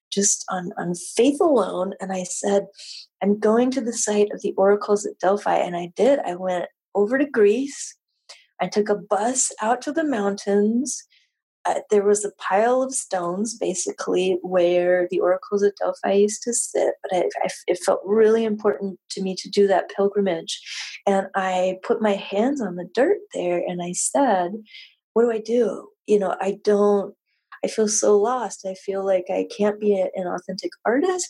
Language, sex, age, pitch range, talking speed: English, female, 30-49, 190-240 Hz, 180 wpm